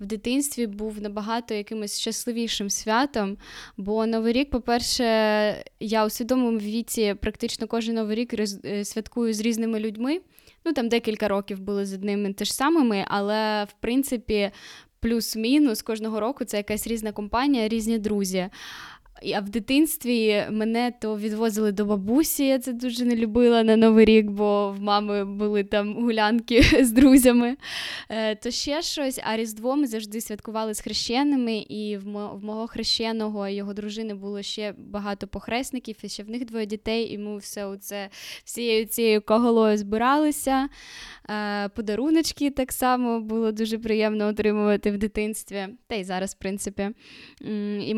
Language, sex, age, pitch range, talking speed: Ukrainian, female, 10-29, 210-235 Hz, 145 wpm